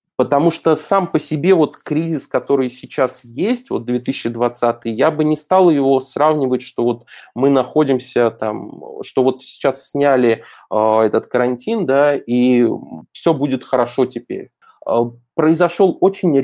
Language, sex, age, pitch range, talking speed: Russian, male, 20-39, 120-145 Hz, 140 wpm